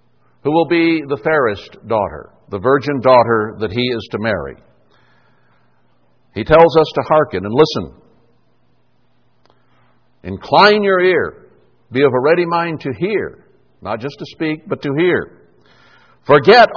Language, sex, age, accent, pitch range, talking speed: English, male, 60-79, American, 125-165 Hz, 140 wpm